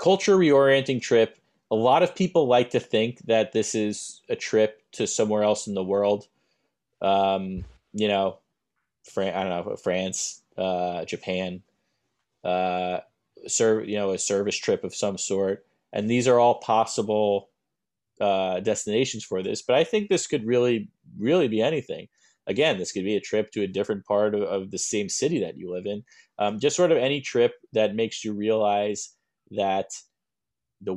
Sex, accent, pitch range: male, American, 100-115 Hz